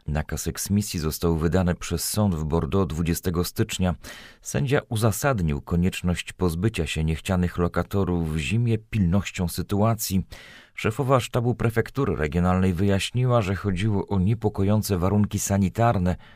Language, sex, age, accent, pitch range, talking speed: Polish, male, 40-59, native, 85-105 Hz, 115 wpm